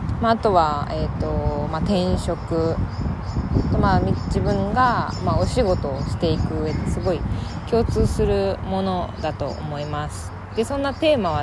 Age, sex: 20-39, female